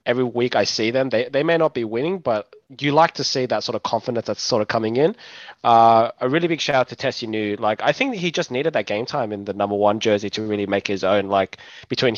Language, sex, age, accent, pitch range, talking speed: English, male, 20-39, Australian, 105-135 Hz, 275 wpm